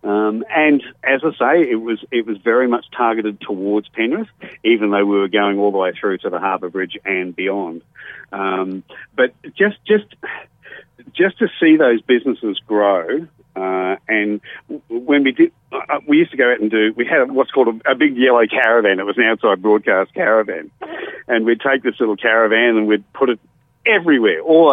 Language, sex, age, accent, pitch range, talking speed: English, male, 50-69, Australian, 105-130 Hz, 190 wpm